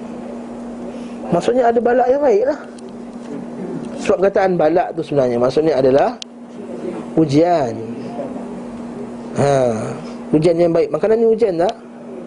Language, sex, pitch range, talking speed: Malay, male, 135-205 Hz, 110 wpm